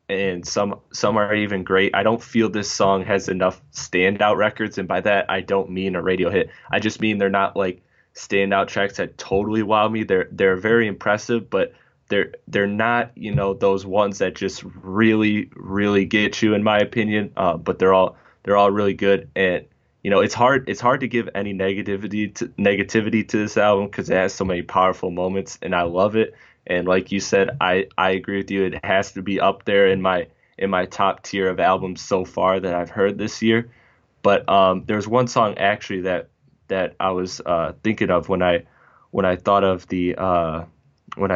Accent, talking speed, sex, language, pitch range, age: American, 205 wpm, male, English, 95-105 Hz, 20-39